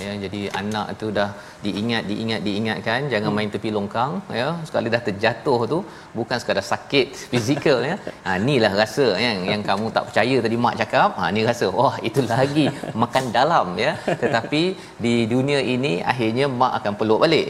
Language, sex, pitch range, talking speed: Malayalam, male, 100-120 Hz, 180 wpm